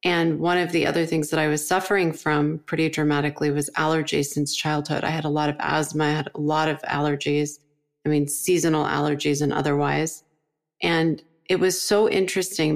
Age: 30-49